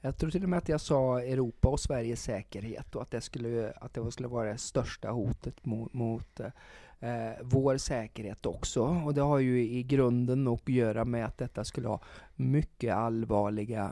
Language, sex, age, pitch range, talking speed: Swedish, male, 30-49, 115-130 Hz, 185 wpm